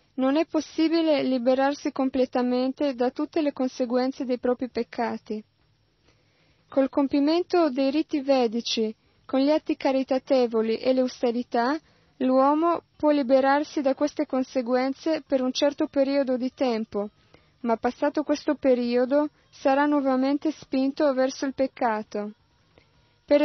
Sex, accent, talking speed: female, native, 120 wpm